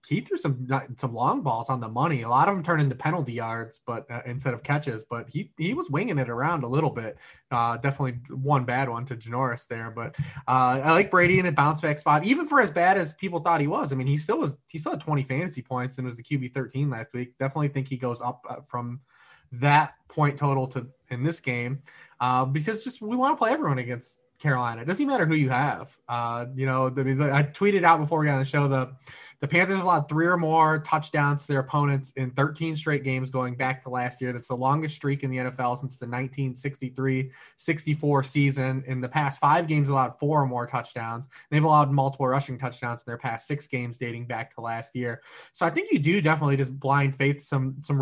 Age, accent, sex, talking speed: 20-39, American, male, 235 wpm